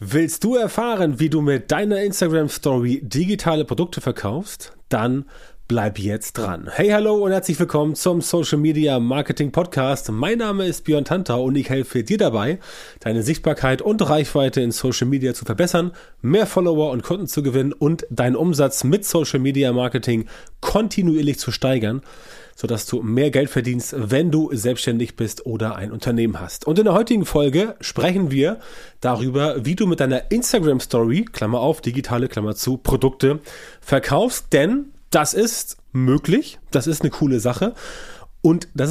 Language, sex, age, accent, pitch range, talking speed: German, male, 30-49, German, 130-170 Hz, 160 wpm